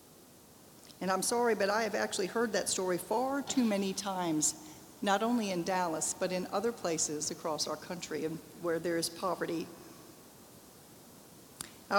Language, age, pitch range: English, 50-69, 185-235 Hz